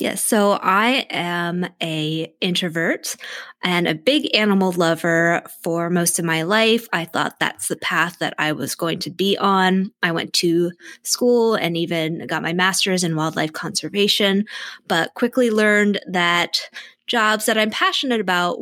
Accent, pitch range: American, 165-205 Hz